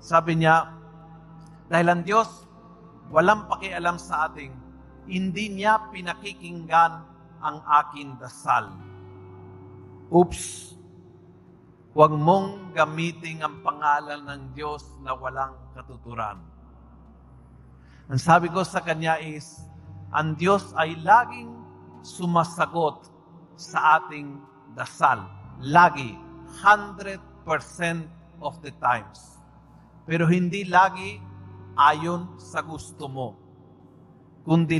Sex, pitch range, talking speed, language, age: male, 125-180 Hz, 90 wpm, Filipino, 50-69